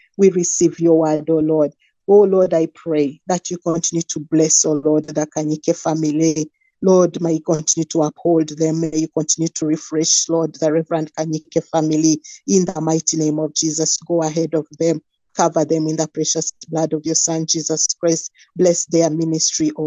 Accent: Nigerian